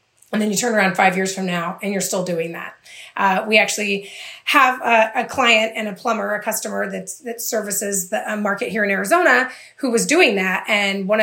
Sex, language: female, English